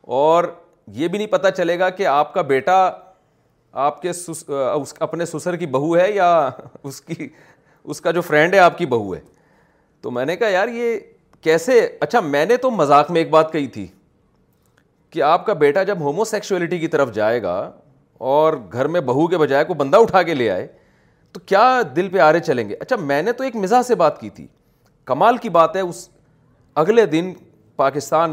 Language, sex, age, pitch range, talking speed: Urdu, male, 40-59, 140-190 Hz, 205 wpm